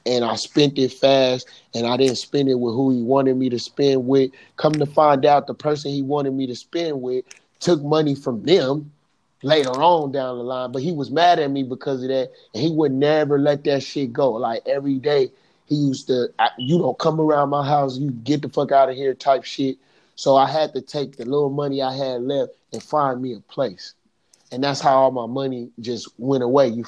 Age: 30-49